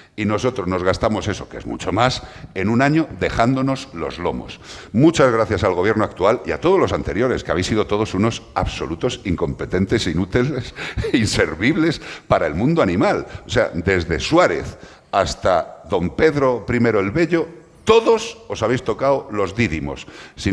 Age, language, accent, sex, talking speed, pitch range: 60-79, Spanish, Spanish, male, 165 wpm, 90-125 Hz